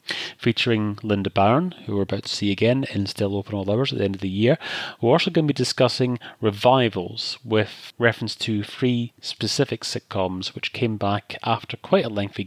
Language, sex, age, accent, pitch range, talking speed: English, male, 30-49, British, 105-125 Hz, 195 wpm